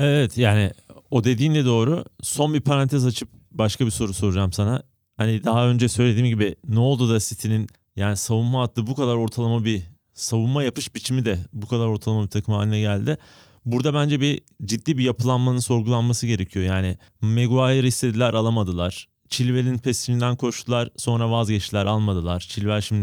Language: Turkish